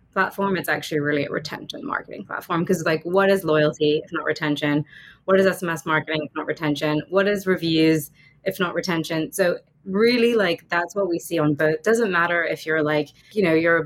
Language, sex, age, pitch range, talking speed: English, female, 20-39, 155-185 Hz, 205 wpm